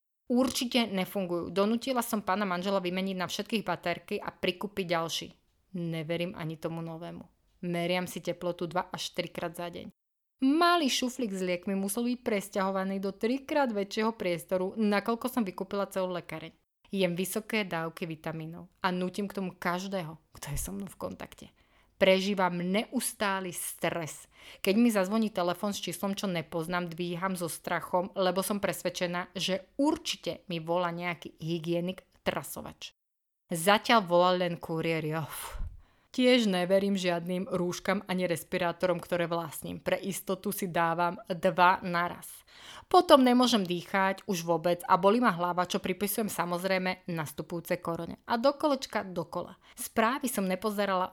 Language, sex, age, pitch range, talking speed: Slovak, female, 20-39, 175-210 Hz, 140 wpm